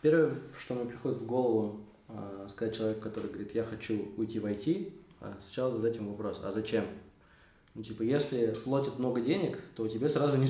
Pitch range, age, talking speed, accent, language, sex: 105-145 Hz, 20-39, 190 wpm, native, Russian, male